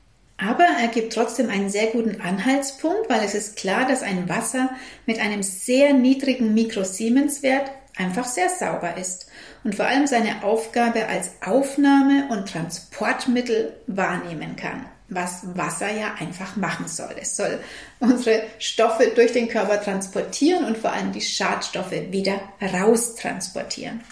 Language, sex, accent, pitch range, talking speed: German, female, German, 195-255 Hz, 140 wpm